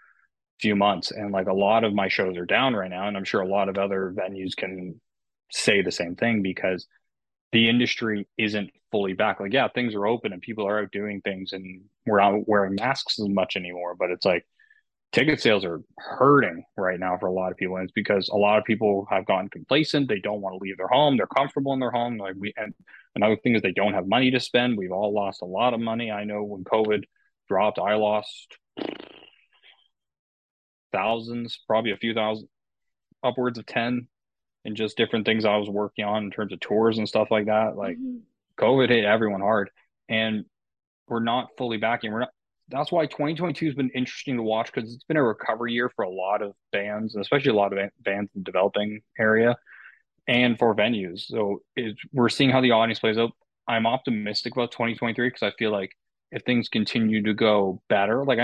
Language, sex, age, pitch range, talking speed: English, male, 20-39, 100-120 Hz, 210 wpm